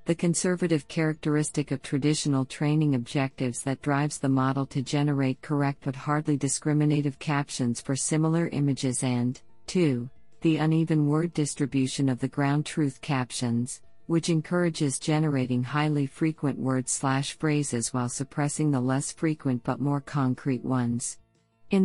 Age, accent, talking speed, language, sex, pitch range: 50-69, American, 130 wpm, English, female, 135-160 Hz